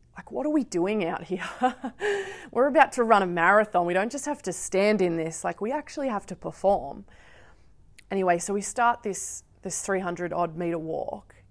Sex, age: female, 20-39